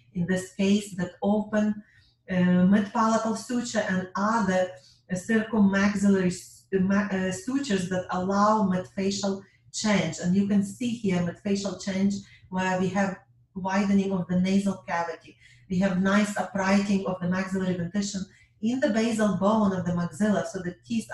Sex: female